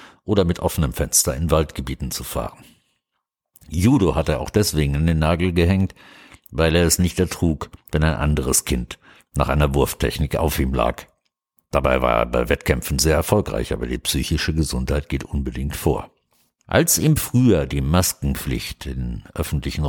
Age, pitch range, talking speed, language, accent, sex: 60-79, 70-90 Hz, 160 wpm, German, German, male